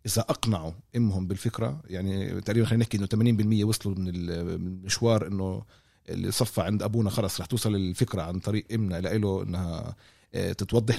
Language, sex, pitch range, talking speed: Arabic, male, 95-115 Hz, 155 wpm